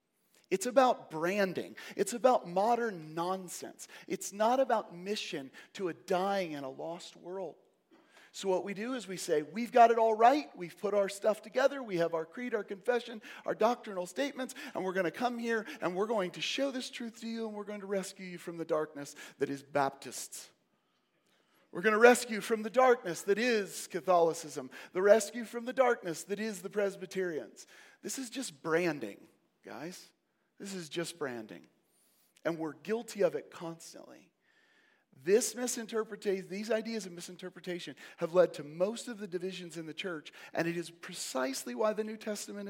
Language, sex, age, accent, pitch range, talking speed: English, male, 40-59, American, 175-240 Hz, 180 wpm